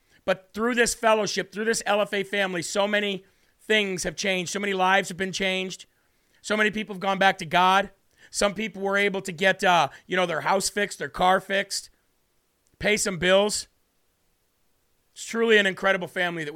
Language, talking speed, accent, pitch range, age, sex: English, 185 wpm, American, 190-215 Hz, 40-59, male